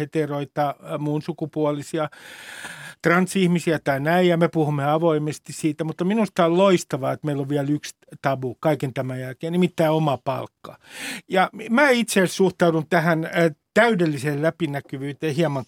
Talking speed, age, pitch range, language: 135 wpm, 50-69, 150-190 Hz, Finnish